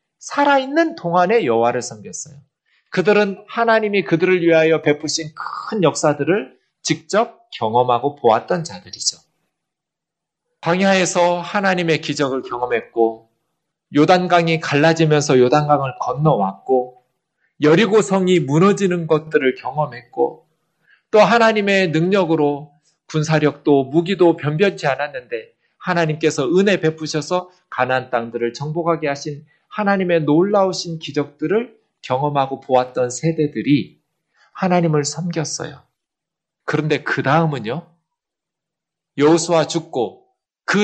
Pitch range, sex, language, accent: 145-185 Hz, male, Korean, native